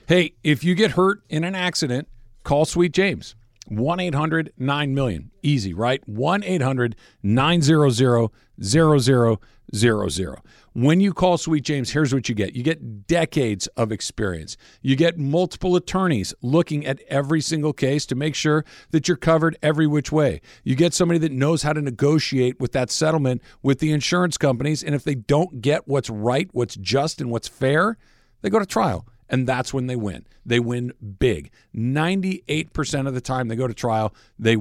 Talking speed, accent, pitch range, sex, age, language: 165 wpm, American, 115-155 Hz, male, 50-69, English